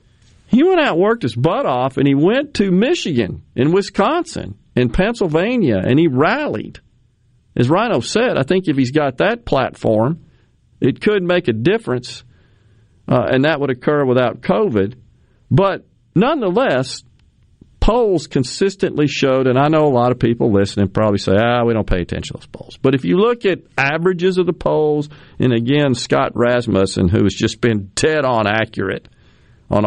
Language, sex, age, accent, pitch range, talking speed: English, male, 50-69, American, 110-155 Hz, 175 wpm